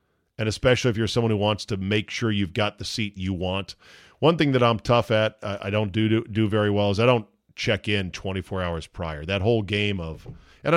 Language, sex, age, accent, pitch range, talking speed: English, male, 40-59, American, 100-120 Hz, 240 wpm